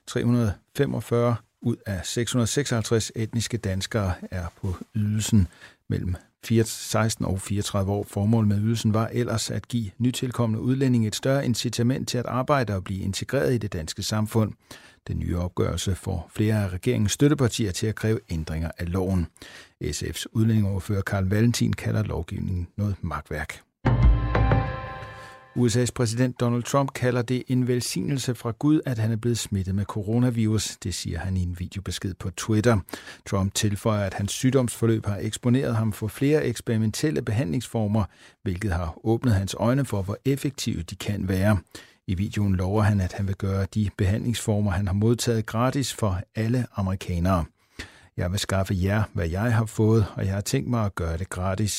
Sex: male